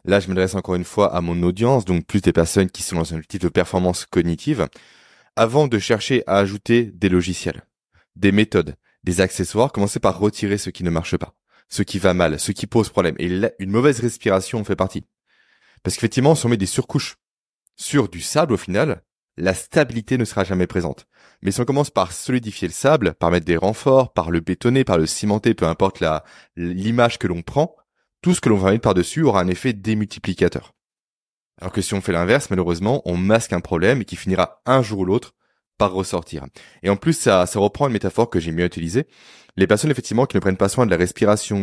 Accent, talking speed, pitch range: French, 220 wpm, 90-120 Hz